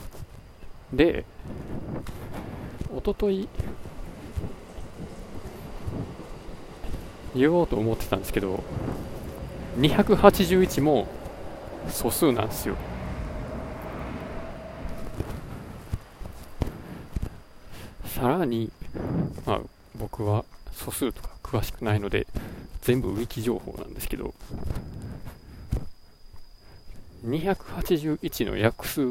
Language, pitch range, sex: Japanese, 100-145 Hz, male